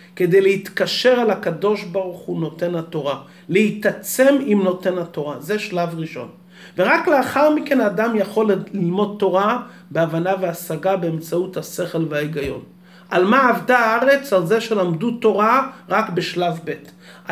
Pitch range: 180-235 Hz